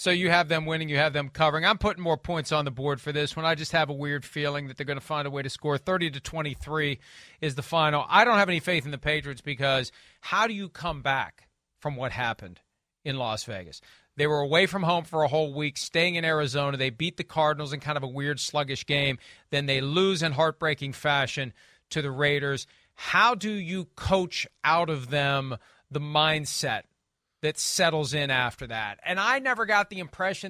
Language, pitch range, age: English, 145-175 Hz, 40-59